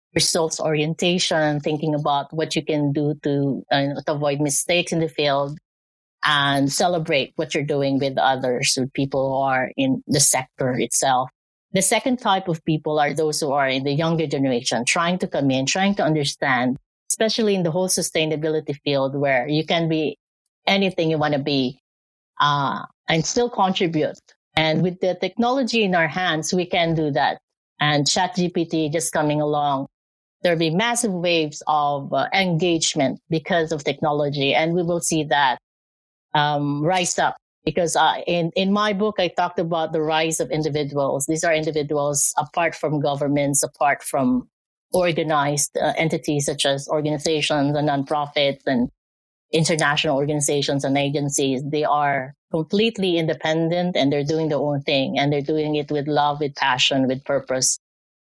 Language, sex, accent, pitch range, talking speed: English, female, Filipino, 140-170 Hz, 165 wpm